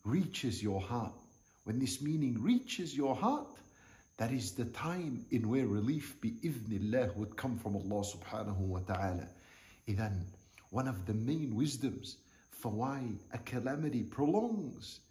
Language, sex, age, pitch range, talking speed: English, male, 50-69, 105-145 Hz, 140 wpm